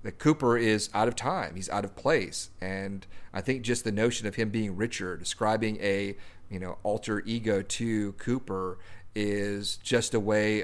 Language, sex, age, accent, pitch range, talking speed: English, male, 40-59, American, 100-115 Hz, 180 wpm